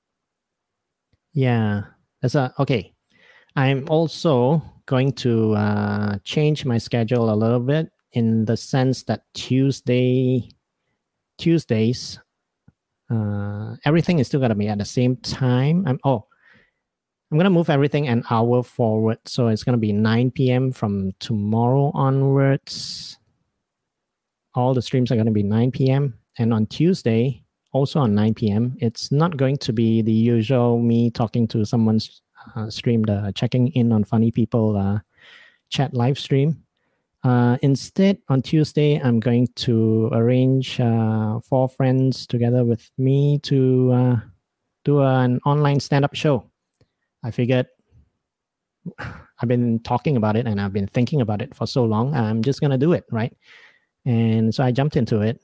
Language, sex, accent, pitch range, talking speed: English, male, Japanese, 115-135 Hz, 150 wpm